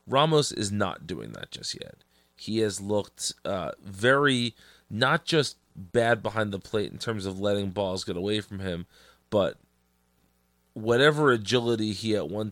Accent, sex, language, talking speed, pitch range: American, male, English, 160 wpm, 90-110 Hz